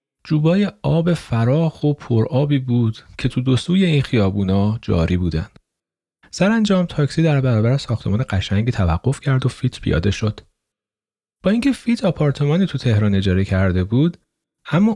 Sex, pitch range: male, 100-145 Hz